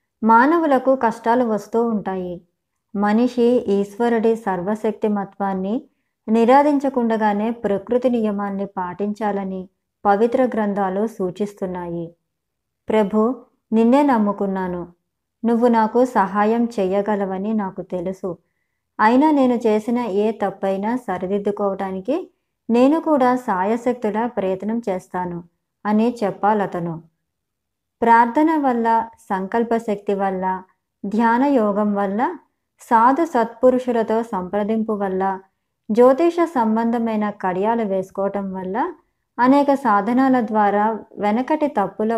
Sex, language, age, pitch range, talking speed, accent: male, Telugu, 20-39, 195-240 Hz, 85 wpm, native